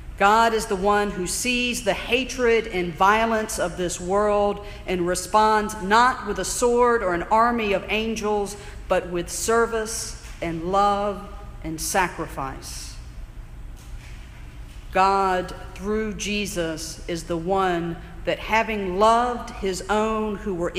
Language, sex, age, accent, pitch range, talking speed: English, female, 50-69, American, 175-225 Hz, 125 wpm